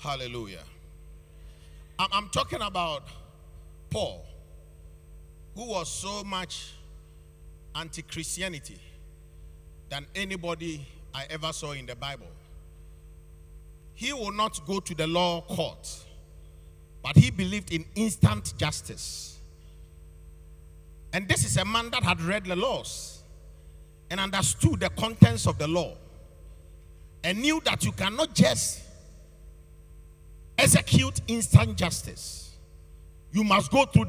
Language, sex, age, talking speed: English, male, 50-69, 110 wpm